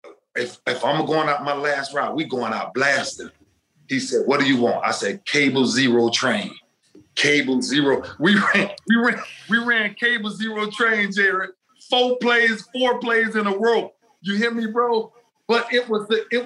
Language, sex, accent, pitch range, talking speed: English, male, American, 155-235 Hz, 185 wpm